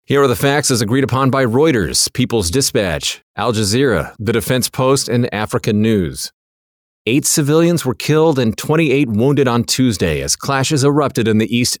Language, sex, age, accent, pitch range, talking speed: English, male, 40-59, American, 105-140 Hz, 175 wpm